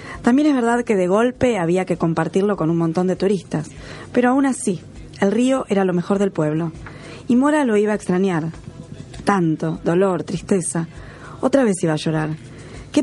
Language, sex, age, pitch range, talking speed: Spanish, female, 20-39, 160-220 Hz, 180 wpm